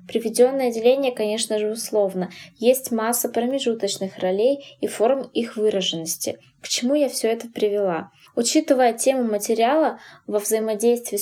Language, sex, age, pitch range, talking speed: Russian, female, 20-39, 200-245 Hz, 130 wpm